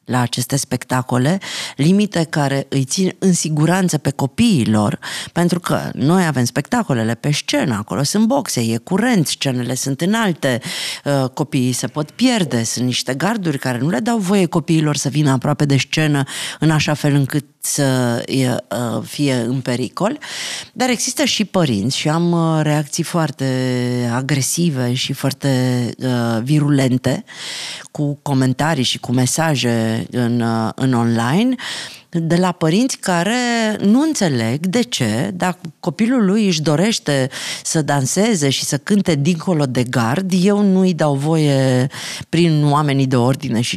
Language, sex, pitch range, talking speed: Romanian, female, 130-190 Hz, 145 wpm